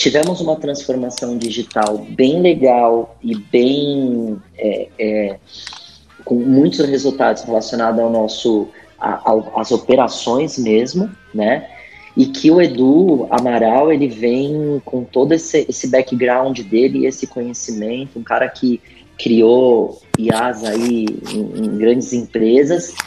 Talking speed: 120 wpm